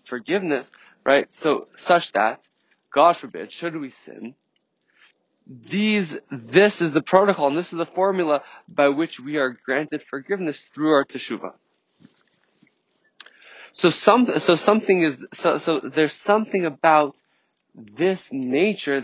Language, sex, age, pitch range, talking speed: English, male, 20-39, 135-180 Hz, 130 wpm